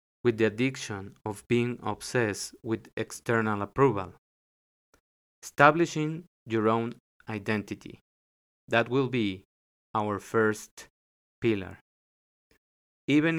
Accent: Mexican